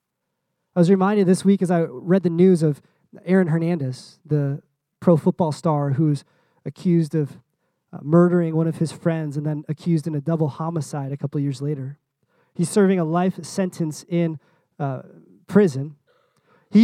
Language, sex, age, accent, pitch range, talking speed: English, male, 20-39, American, 160-200 Hz, 165 wpm